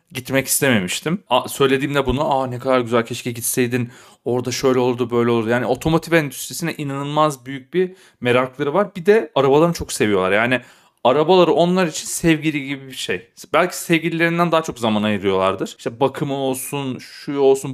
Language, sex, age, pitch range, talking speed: Turkish, male, 40-59, 120-155 Hz, 160 wpm